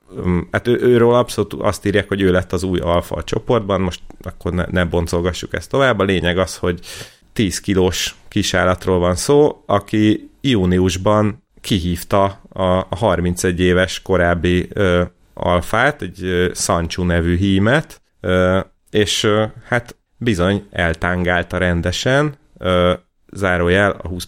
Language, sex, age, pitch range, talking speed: Hungarian, male, 30-49, 90-105 Hz, 135 wpm